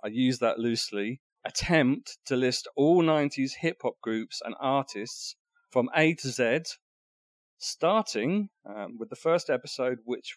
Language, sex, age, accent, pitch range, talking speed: English, male, 40-59, British, 115-155 Hz, 140 wpm